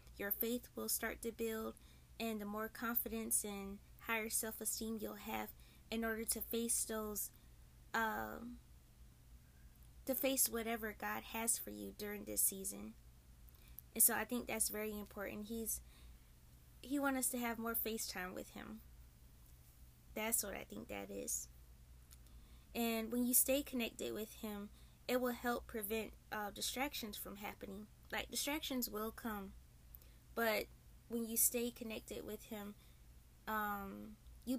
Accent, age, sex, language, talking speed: American, 20-39, female, English, 145 wpm